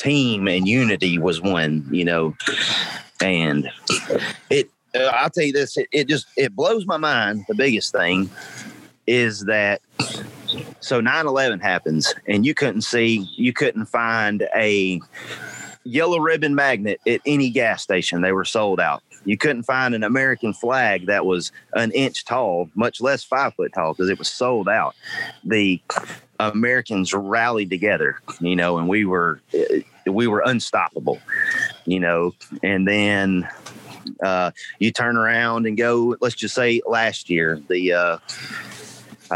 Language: English